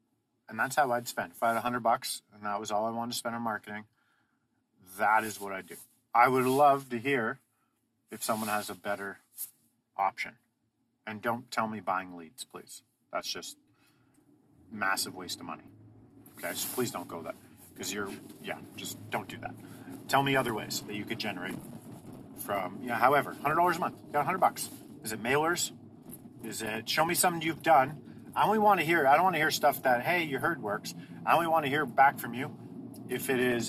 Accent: American